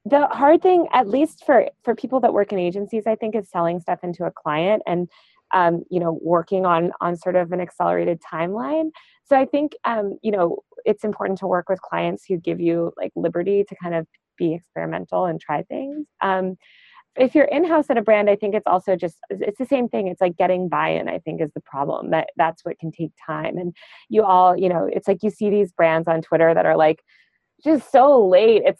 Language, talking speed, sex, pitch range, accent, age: English, 225 wpm, female, 170-230 Hz, American, 20-39